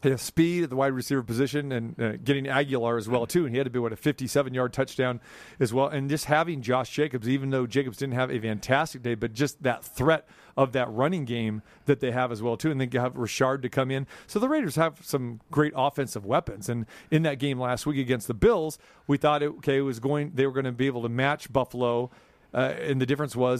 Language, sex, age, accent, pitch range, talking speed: English, male, 40-59, American, 135-180 Hz, 250 wpm